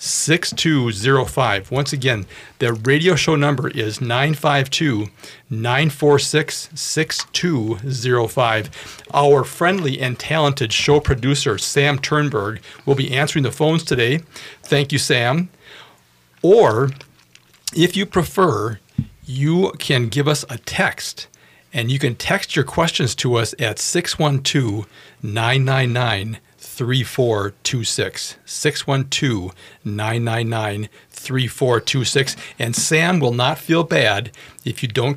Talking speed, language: 95 wpm, English